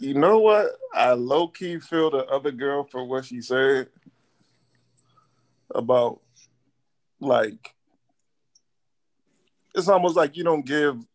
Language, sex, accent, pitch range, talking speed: English, male, American, 125-165 Hz, 115 wpm